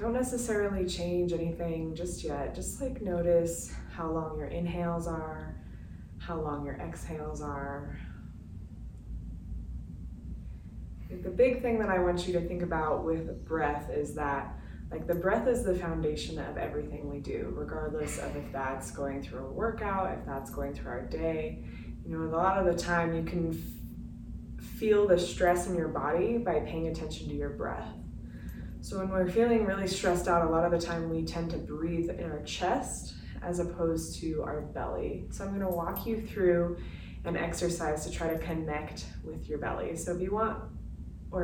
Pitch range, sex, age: 145-185 Hz, female, 20-39